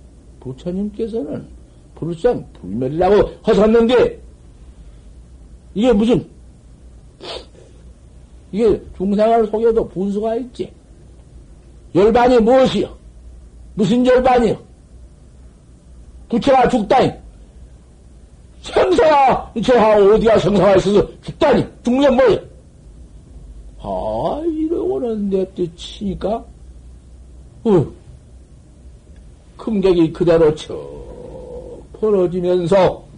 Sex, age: male, 60-79